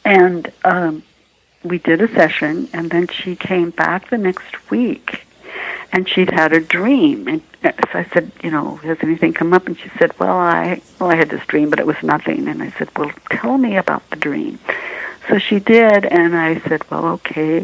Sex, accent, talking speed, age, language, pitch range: female, American, 205 wpm, 60-79, English, 160-205 Hz